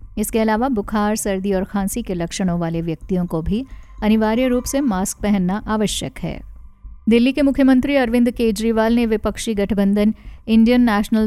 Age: 50-69